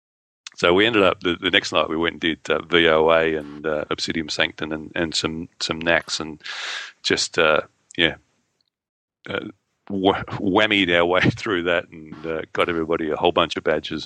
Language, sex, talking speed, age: English, male, 180 wpm, 40-59